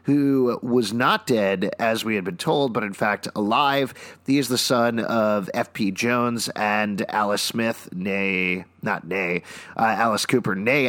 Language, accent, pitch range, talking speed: English, American, 110-145 Hz, 165 wpm